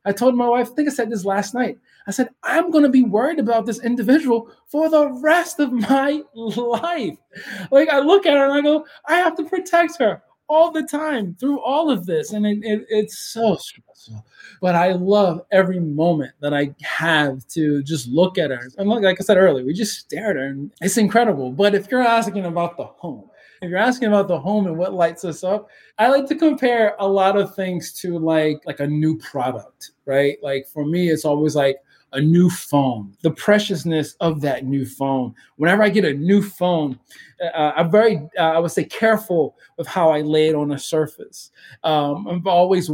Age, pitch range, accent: 20-39, 155-230 Hz, American